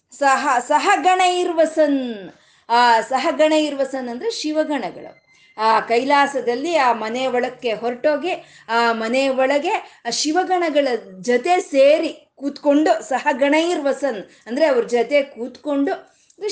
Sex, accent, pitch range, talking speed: female, native, 215-285 Hz, 85 wpm